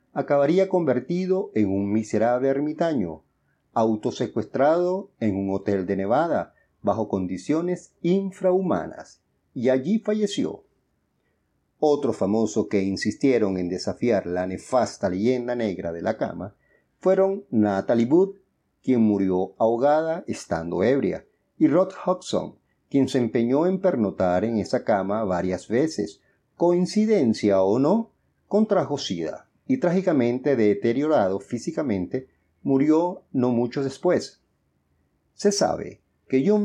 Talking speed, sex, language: 115 wpm, male, English